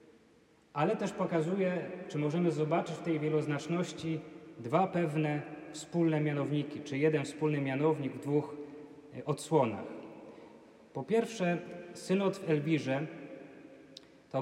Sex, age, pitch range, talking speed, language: male, 30-49, 145-170 Hz, 110 wpm, Polish